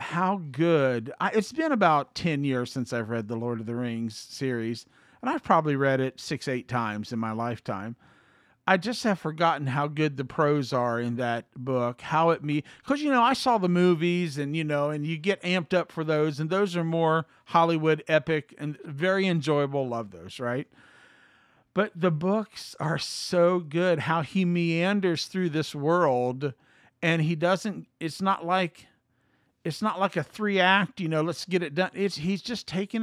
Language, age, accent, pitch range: English, 50-69, American, 145-185 Hz